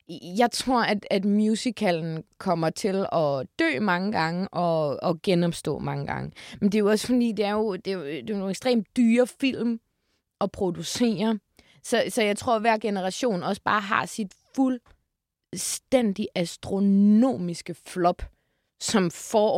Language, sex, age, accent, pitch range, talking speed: Danish, female, 20-39, native, 165-210 Hz, 160 wpm